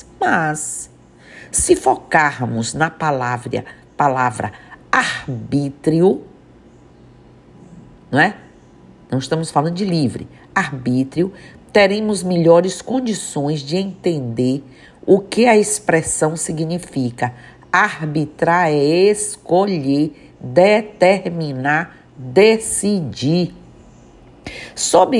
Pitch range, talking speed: 145-200 Hz, 75 wpm